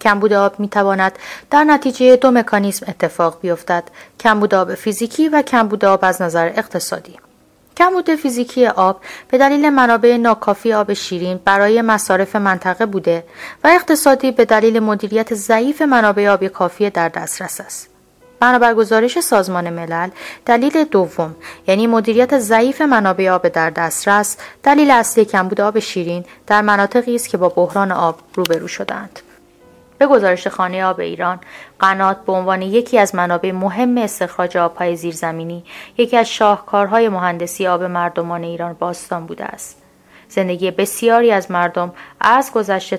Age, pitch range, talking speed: 30-49, 175-235 Hz, 140 wpm